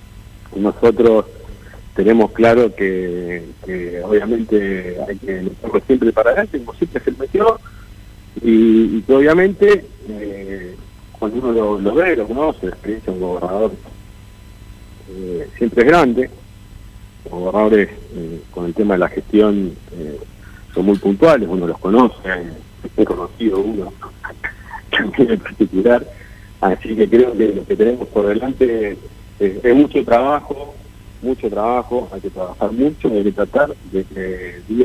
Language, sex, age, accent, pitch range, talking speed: Spanish, male, 50-69, Argentinian, 95-110 Hz, 135 wpm